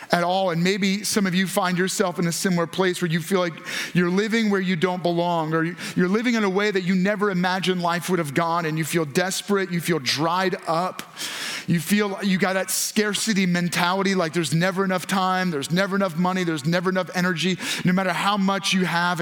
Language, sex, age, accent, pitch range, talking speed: English, male, 30-49, American, 175-200 Hz, 220 wpm